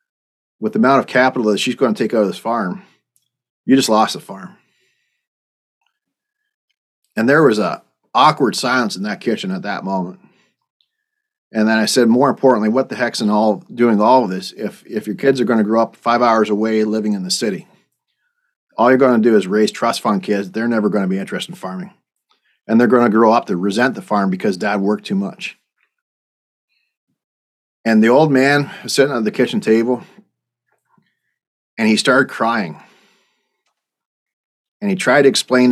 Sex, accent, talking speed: male, American, 190 wpm